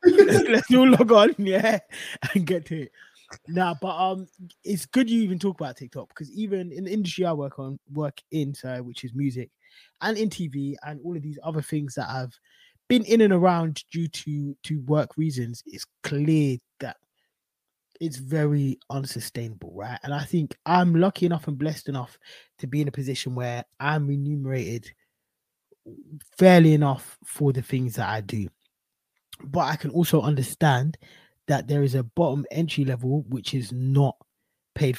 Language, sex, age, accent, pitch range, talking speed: English, male, 20-39, British, 135-170 Hz, 175 wpm